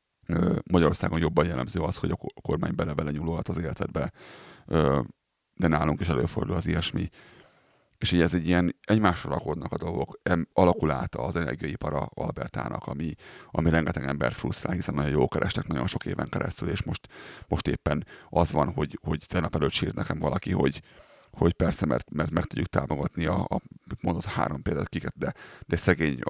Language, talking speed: Hungarian, 165 wpm